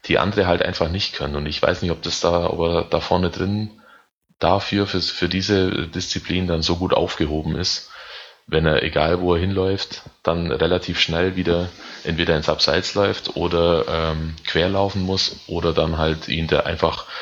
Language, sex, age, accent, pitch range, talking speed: German, male, 30-49, German, 85-95 Hz, 180 wpm